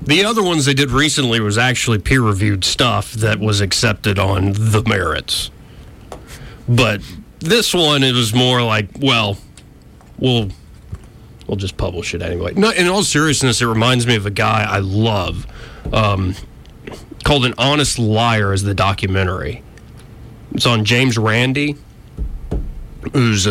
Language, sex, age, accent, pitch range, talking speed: English, male, 30-49, American, 100-125 Hz, 140 wpm